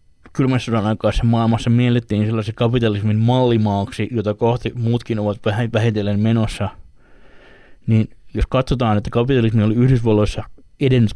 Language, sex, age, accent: Finnish, male, 20-39, native